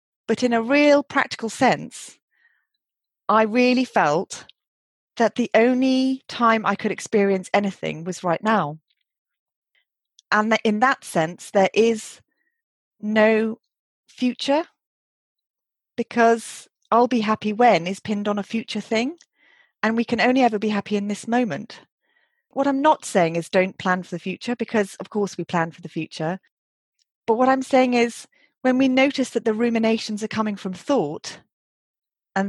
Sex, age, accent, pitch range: female, 30-49, British, 185-240 Hz